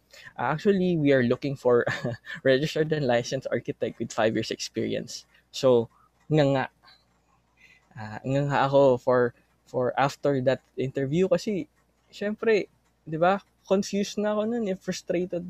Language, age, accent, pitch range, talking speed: Filipino, 20-39, native, 120-155 Hz, 135 wpm